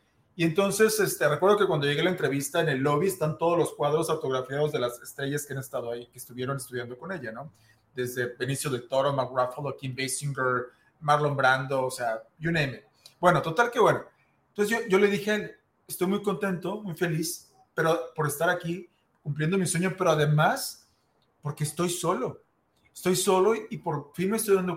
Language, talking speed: Spanish, 195 wpm